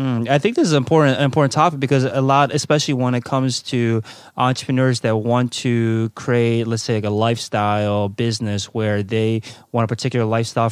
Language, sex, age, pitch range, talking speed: English, male, 20-39, 110-130 Hz, 185 wpm